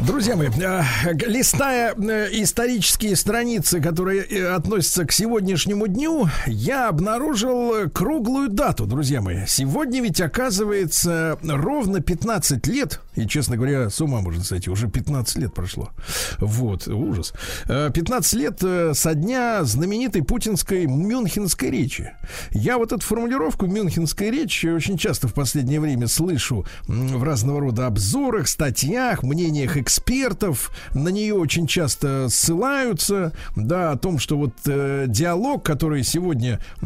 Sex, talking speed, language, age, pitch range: male, 125 wpm, Russian, 50-69, 125-190 Hz